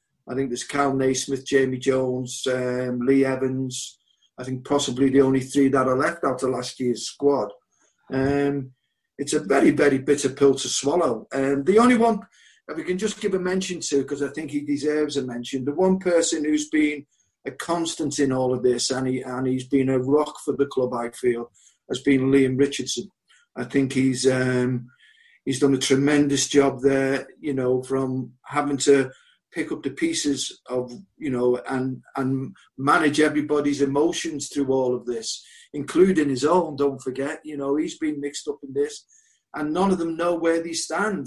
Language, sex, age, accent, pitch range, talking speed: English, male, 50-69, British, 130-155 Hz, 190 wpm